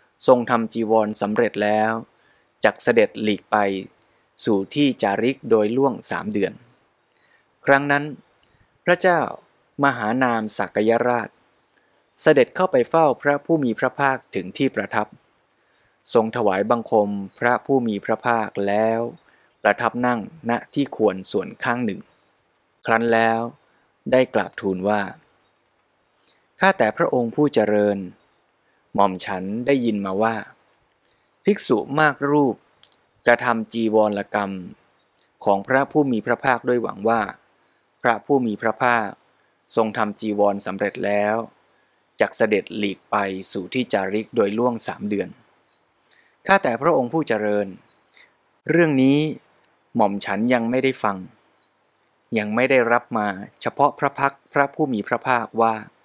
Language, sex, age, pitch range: Thai, male, 20-39, 105-130 Hz